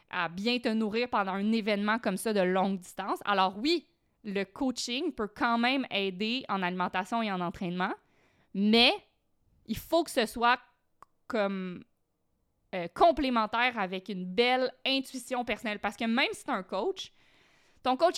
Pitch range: 195-245 Hz